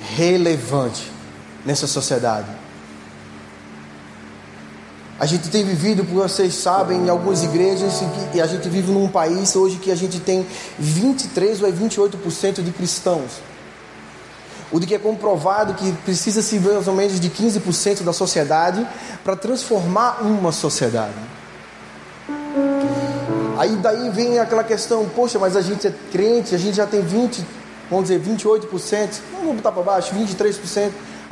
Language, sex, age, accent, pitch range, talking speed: Portuguese, male, 20-39, Brazilian, 145-210 Hz, 140 wpm